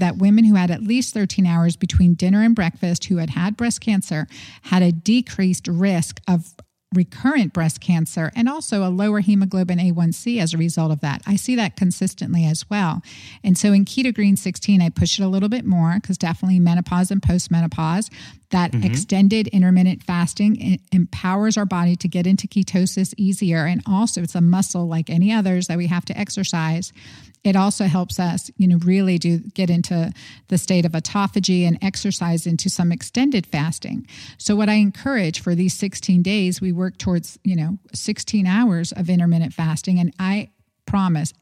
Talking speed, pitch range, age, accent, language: 180 wpm, 175-205 Hz, 50-69, American, English